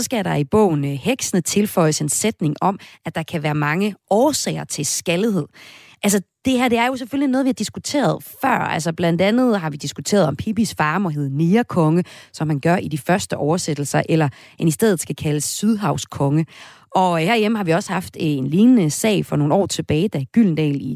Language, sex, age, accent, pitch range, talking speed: Danish, female, 30-49, native, 155-215 Hz, 205 wpm